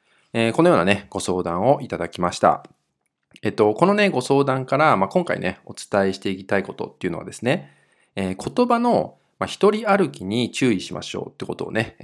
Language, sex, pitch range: Japanese, male, 95-145 Hz